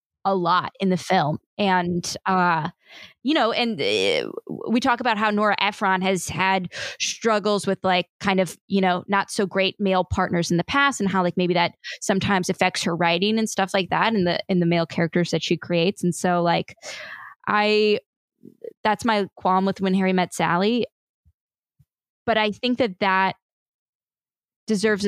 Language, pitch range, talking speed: English, 180-215 Hz, 175 wpm